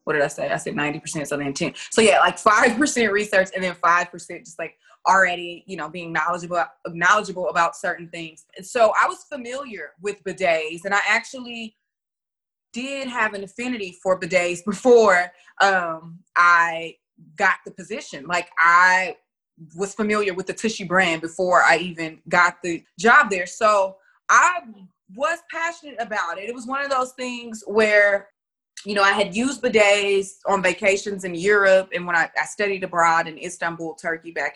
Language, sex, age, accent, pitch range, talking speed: English, female, 20-39, American, 175-225 Hz, 170 wpm